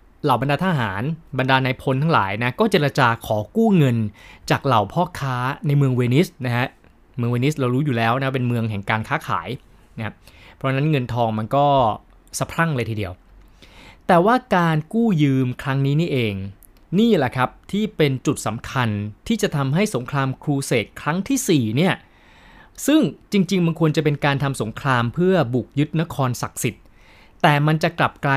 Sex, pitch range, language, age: male, 125-170 Hz, Thai, 20-39